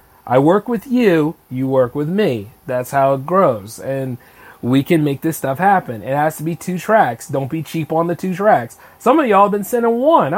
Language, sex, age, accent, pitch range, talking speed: English, male, 30-49, American, 160-235 Hz, 225 wpm